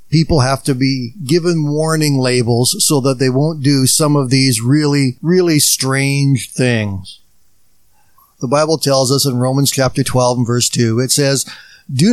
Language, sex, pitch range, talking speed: English, male, 130-160 Hz, 165 wpm